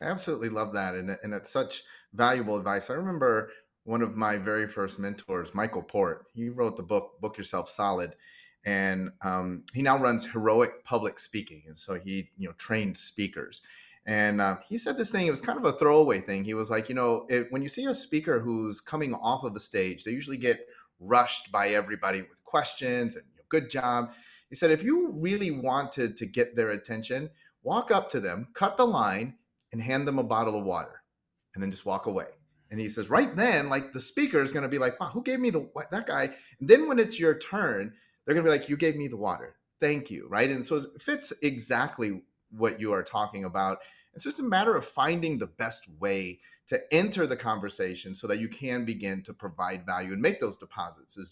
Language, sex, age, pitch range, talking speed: English, male, 30-49, 105-160 Hz, 225 wpm